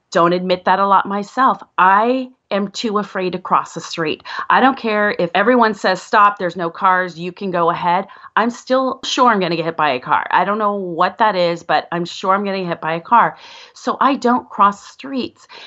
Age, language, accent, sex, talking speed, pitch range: 30-49, English, American, female, 235 wpm, 180-255 Hz